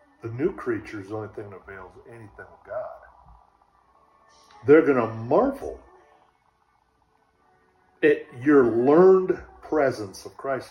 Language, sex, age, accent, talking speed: English, male, 50-69, American, 125 wpm